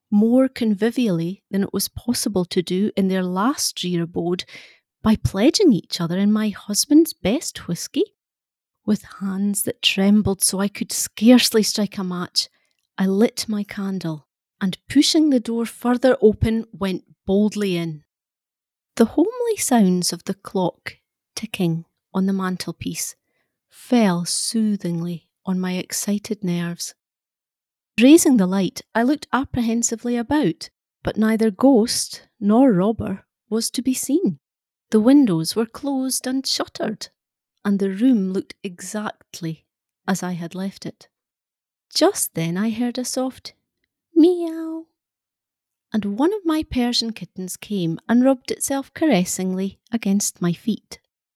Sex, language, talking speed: female, English, 135 wpm